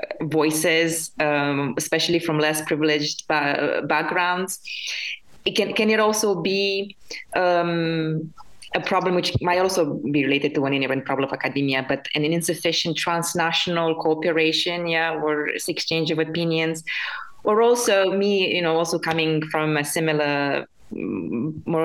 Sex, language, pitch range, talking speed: female, Czech, 155-180 Hz, 135 wpm